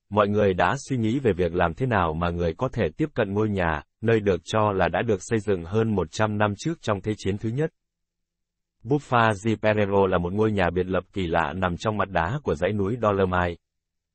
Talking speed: 225 wpm